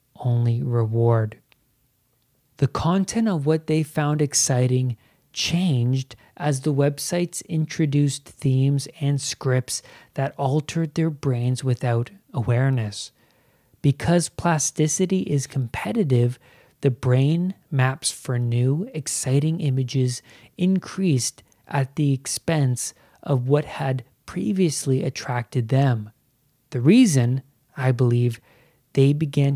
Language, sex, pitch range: English, male, 125-150 Hz